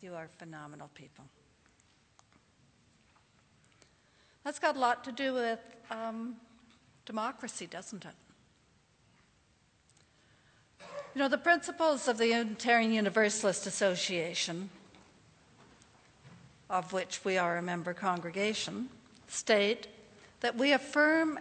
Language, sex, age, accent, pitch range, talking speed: English, female, 60-79, American, 195-240 Hz, 100 wpm